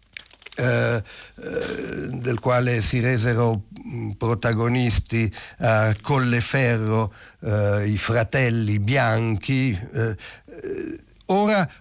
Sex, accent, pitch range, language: male, native, 110-145 Hz, Italian